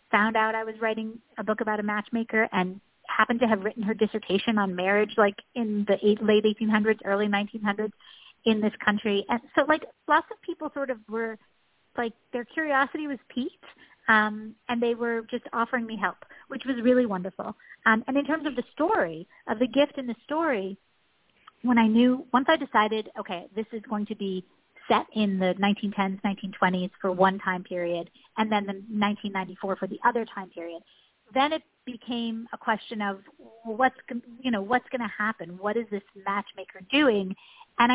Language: English